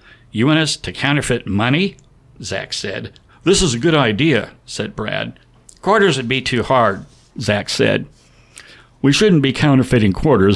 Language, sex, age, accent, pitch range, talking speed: English, male, 60-79, American, 110-145 Hz, 155 wpm